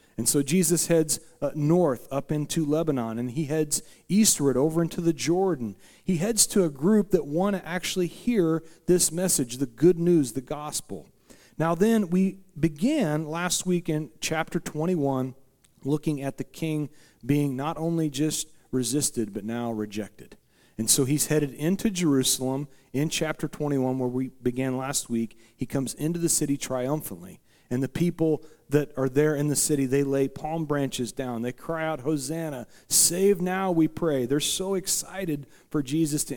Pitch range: 130-165 Hz